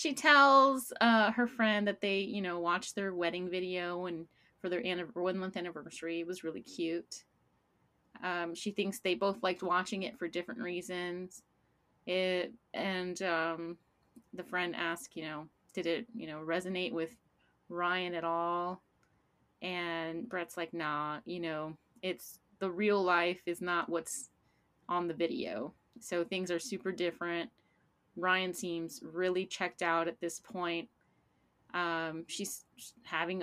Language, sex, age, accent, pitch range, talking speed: English, female, 20-39, American, 165-185 Hz, 150 wpm